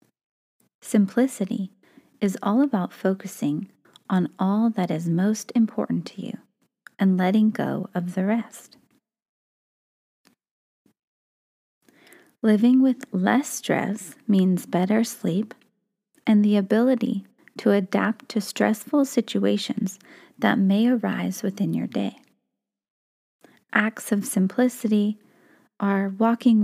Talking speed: 100 wpm